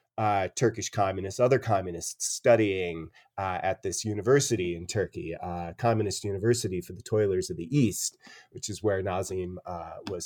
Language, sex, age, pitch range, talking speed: English, male, 30-49, 100-145 Hz, 160 wpm